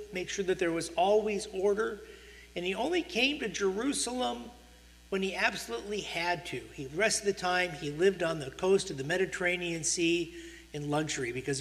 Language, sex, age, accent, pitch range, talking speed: English, male, 50-69, American, 135-195 Hz, 185 wpm